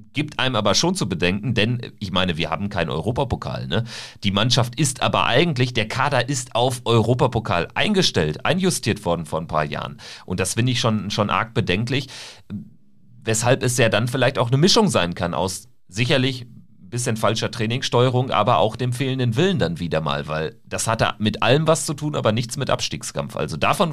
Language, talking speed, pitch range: German, 195 wpm, 105-145 Hz